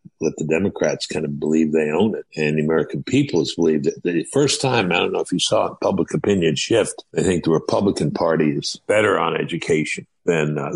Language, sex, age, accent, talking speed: English, male, 60-79, American, 225 wpm